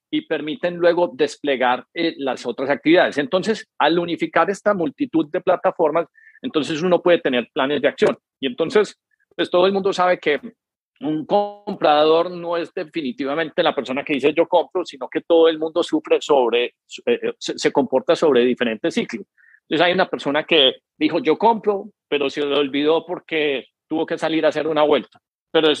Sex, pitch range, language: male, 150-185 Hz, Spanish